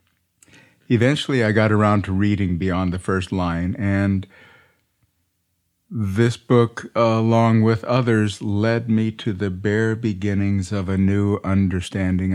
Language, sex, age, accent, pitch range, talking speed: English, male, 50-69, American, 95-115 Hz, 125 wpm